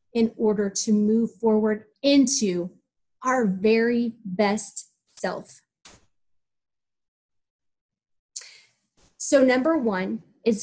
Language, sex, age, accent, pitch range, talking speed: English, female, 30-49, American, 200-235 Hz, 80 wpm